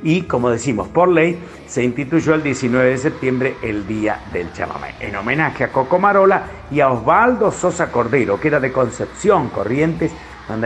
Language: Spanish